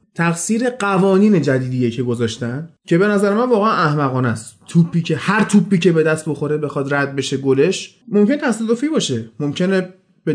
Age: 30-49